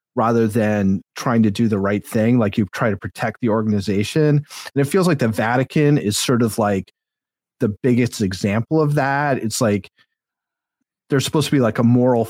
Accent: American